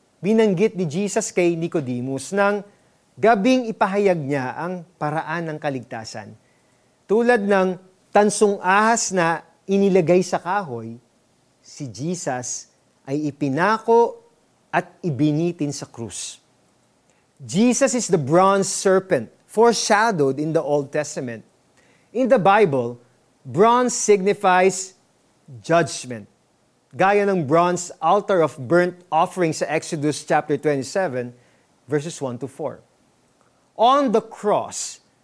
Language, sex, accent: Filipino, male, native